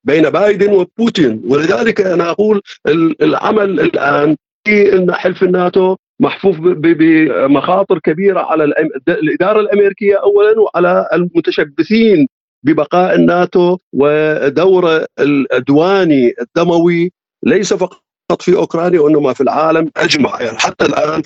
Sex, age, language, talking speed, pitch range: male, 50-69, Arabic, 100 wpm, 150-195 Hz